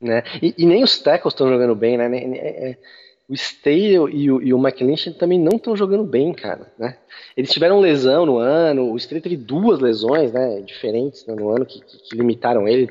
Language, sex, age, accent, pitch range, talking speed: Portuguese, male, 20-39, Brazilian, 130-190 Hz, 200 wpm